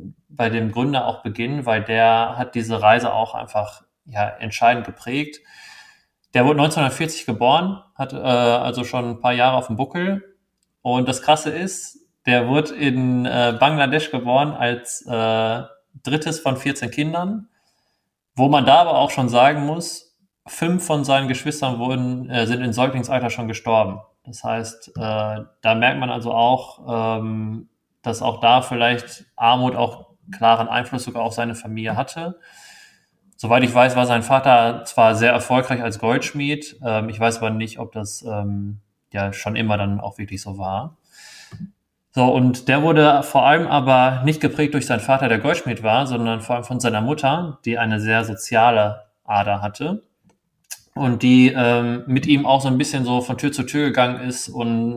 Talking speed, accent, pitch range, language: 170 wpm, German, 115-145 Hz, German